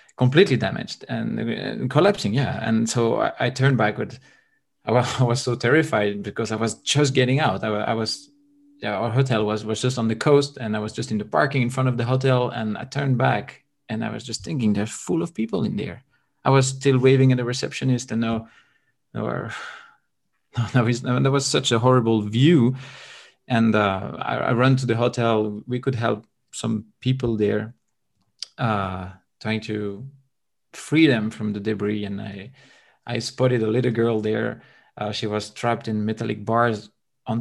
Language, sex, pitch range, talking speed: English, male, 110-130 Hz, 190 wpm